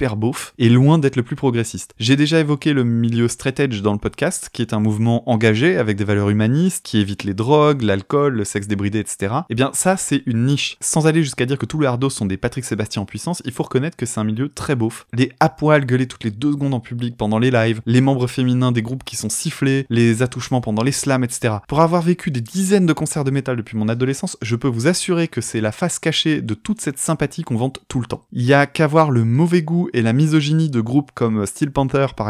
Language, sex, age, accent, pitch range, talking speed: French, male, 20-39, French, 115-150 Hz, 255 wpm